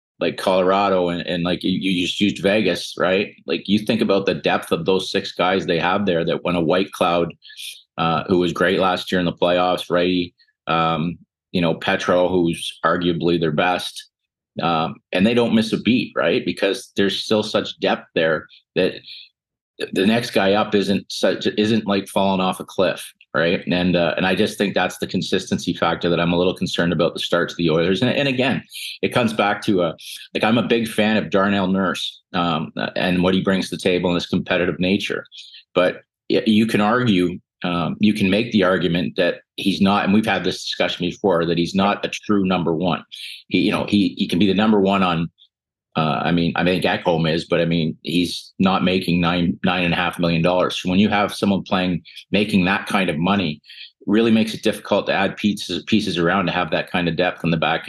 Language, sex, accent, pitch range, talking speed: English, male, American, 85-100 Hz, 215 wpm